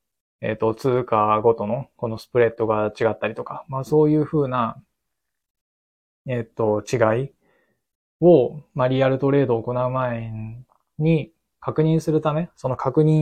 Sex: male